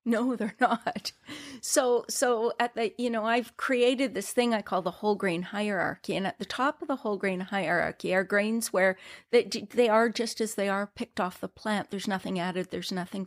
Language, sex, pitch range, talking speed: English, female, 200-240 Hz, 215 wpm